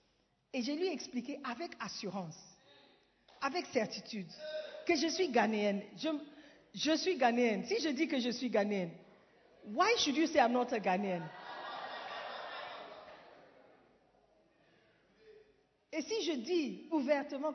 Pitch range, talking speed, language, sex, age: 245-385 Hz, 135 wpm, French, female, 40-59